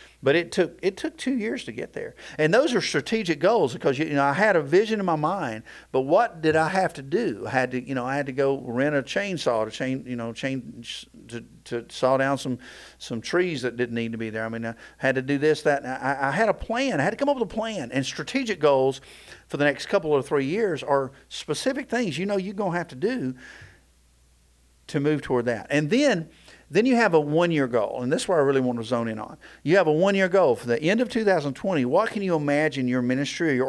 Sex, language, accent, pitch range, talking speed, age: male, English, American, 120-165 Hz, 260 wpm, 50-69